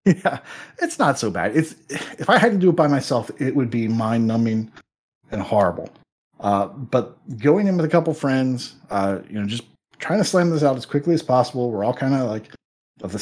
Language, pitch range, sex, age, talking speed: English, 115-160 Hz, male, 30-49, 220 wpm